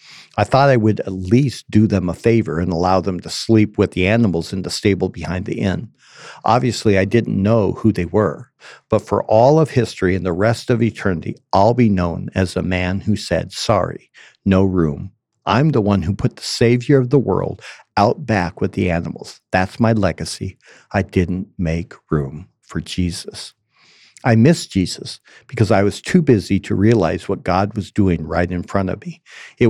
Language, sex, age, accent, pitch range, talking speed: English, male, 50-69, American, 95-120 Hz, 195 wpm